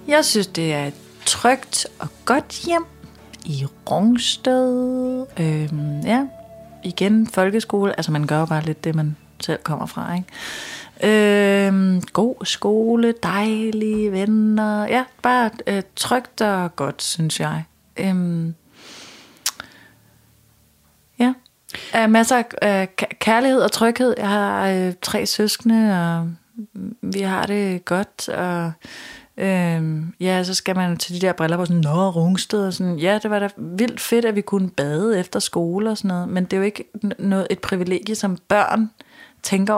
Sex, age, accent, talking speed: female, 30-49, native, 150 wpm